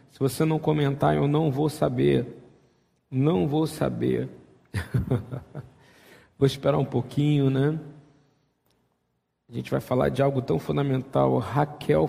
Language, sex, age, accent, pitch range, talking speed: Portuguese, male, 40-59, Brazilian, 120-140 Hz, 125 wpm